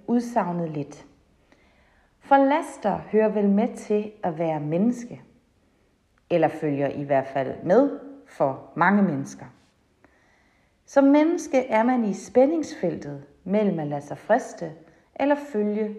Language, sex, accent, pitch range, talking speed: Danish, female, native, 150-230 Hz, 125 wpm